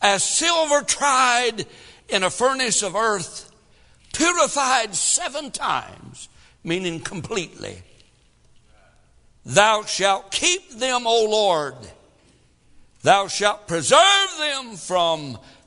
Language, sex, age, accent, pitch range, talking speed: English, male, 60-79, American, 145-225 Hz, 90 wpm